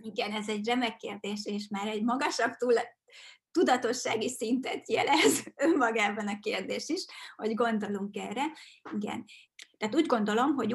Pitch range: 205-240 Hz